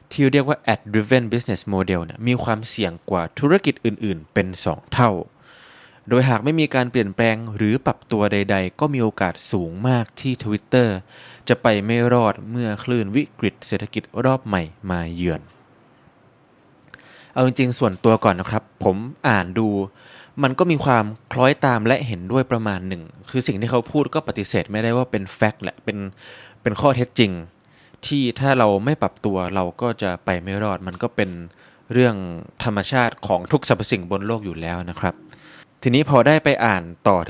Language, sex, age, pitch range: Thai, male, 20-39, 100-125 Hz